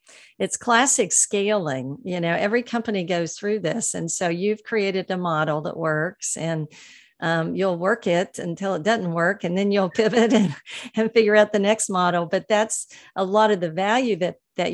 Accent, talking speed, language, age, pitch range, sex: American, 190 wpm, English, 50-69, 165-205 Hz, female